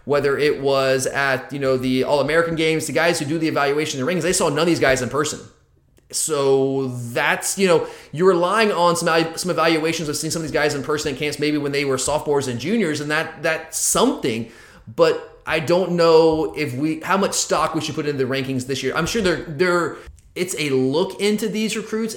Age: 30-49